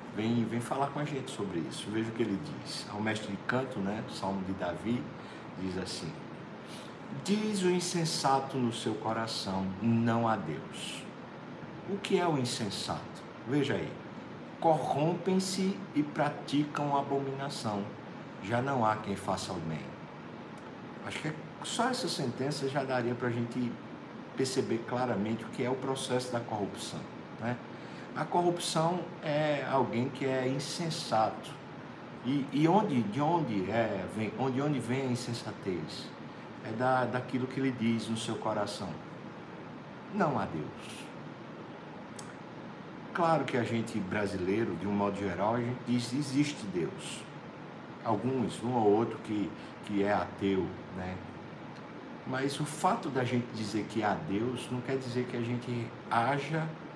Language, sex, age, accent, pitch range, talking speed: Portuguese, male, 60-79, Brazilian, 110-140 Hz, 145 wpm